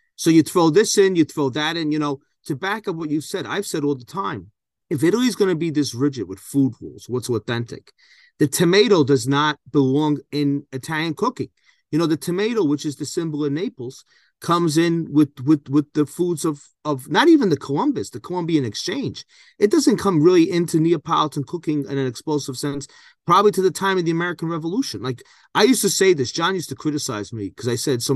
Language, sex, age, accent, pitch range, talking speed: English, male, 30-49, American, 130-170 Hz, 220 wpm